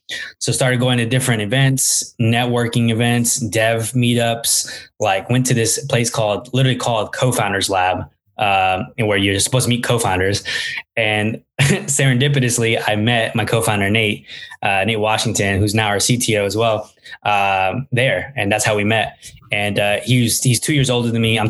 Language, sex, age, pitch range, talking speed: English, male, 10-29, 105-125 Hz, 180 wpm